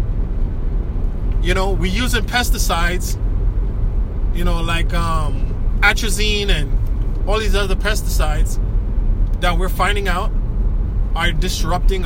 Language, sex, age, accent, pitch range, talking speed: English, male, 20-39, American, 80-95 Hz, 105 wpm